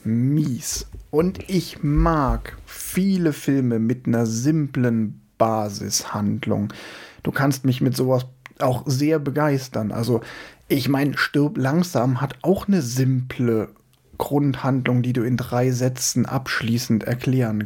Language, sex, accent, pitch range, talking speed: German, male, German, 125-145 Hz, 120 wpm